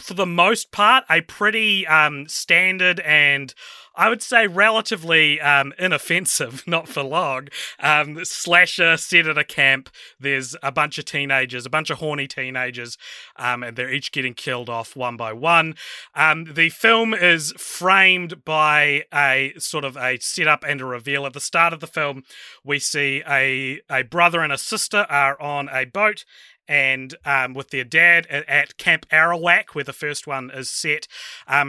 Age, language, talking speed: 30-49, English, 170 wpm